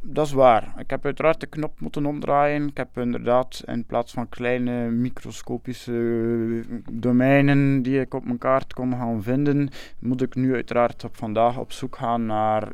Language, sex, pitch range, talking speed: English, male, 110-125 Hz, 175 wpm